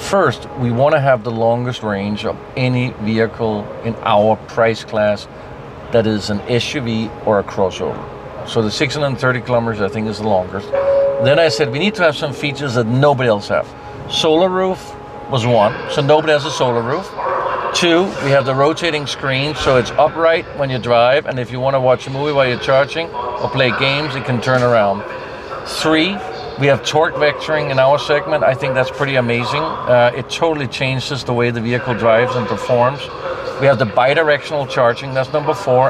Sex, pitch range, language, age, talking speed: male, 125-155 Hz, English, 50-69, 195 wpm